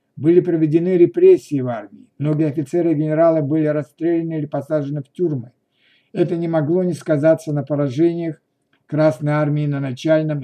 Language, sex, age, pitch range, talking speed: Russian, male, 60-79, 140-170 Hz, 150 wpm